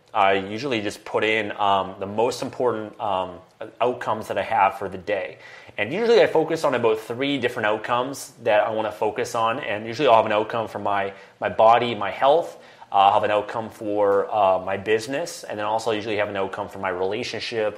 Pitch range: 105-140 Hz